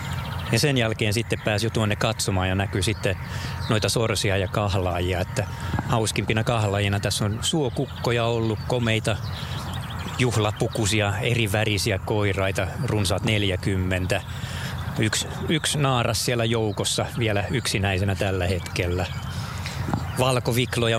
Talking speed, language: 105 wpm, Finnish